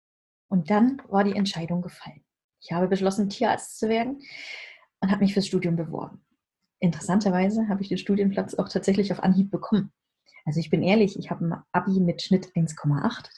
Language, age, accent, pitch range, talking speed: German, 20-39, German, 180-225 Hz, 175 wpm